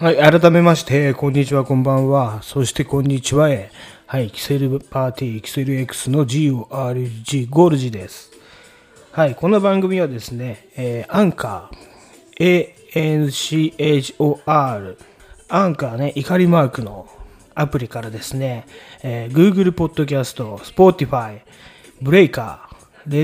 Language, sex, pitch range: Japanese, male, 130-165 Hz